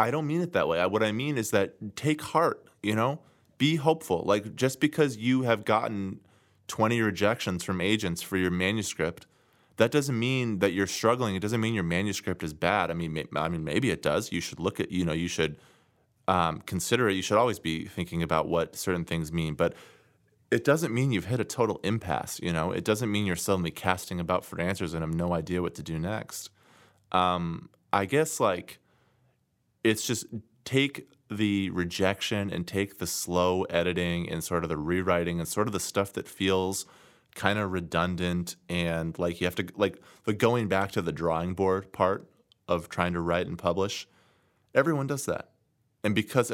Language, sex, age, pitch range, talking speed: English, male, 30-49, 85-110 Hz, 200 wpm